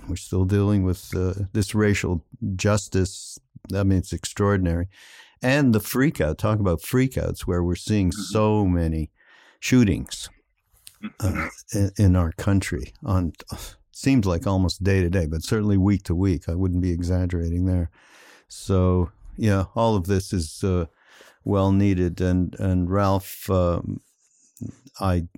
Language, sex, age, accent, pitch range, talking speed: English, male, 60-79, American, 90-100 Hz, 140 wpm